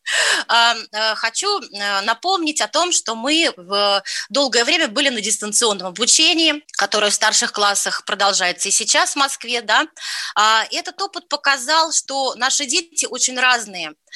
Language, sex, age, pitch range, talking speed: Russian, female, 20-39, 215-290 Hz, 130 wpm